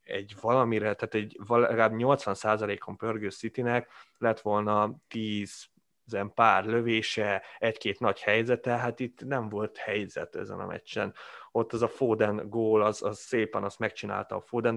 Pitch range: 105-120 Hz